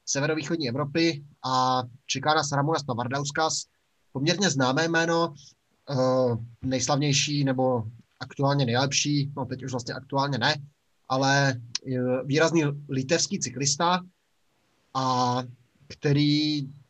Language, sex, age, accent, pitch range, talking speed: Czech, male, 20-39, native, 130-150 Hz, 90 wpm